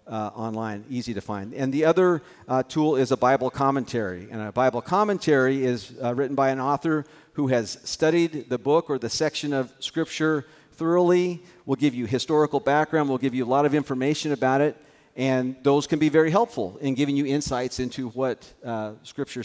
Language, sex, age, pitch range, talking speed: English, male, 50-69, 130-185 Hz, 190 wpm